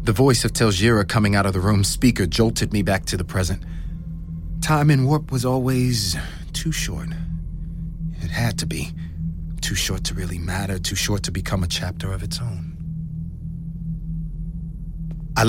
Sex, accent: male, American